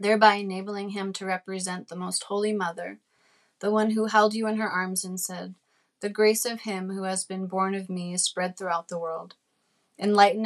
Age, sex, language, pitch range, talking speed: 30-49, female, English, 180-205 Hz, 200 wpm